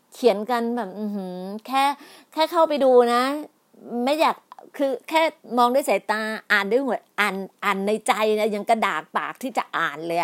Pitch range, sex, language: 205-250 Hz, female, Thai